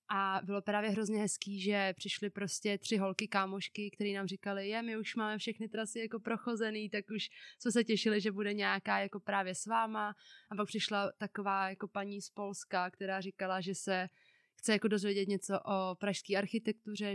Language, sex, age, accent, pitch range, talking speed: Czech, female, 20-39, native, 190-220 Hz, 185 wpm